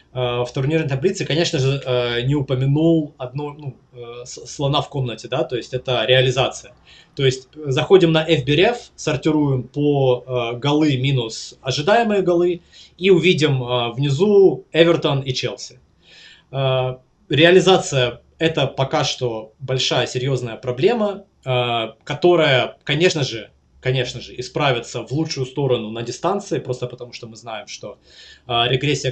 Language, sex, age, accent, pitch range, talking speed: Russian, male, 20-39, native, 125-155 Hz, 120 wpm